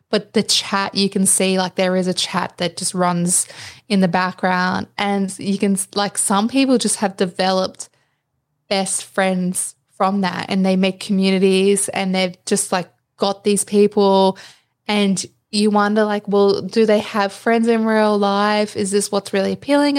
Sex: female